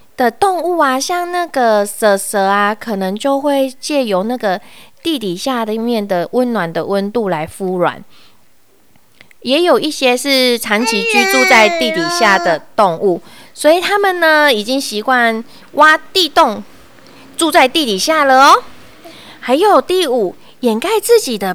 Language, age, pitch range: Chinese, 20-39, 205-295 Hz